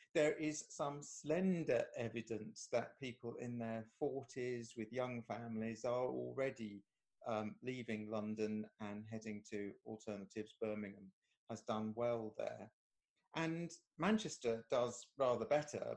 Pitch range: 115-155 Hz